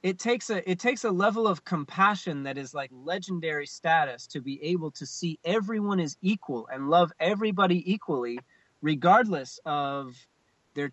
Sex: male